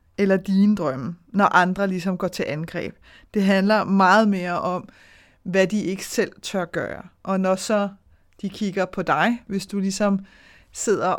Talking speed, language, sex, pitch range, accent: 165 wpm, Danish, female, 180-205 Hz, native